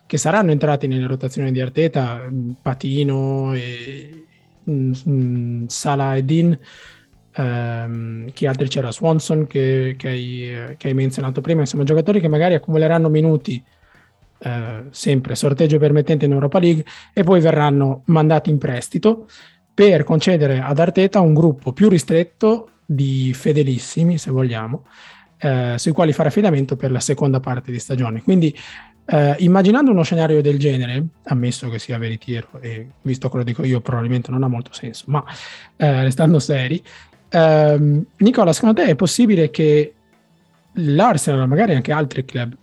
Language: Italian